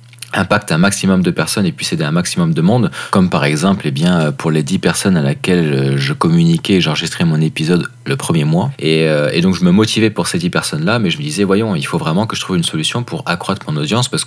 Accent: French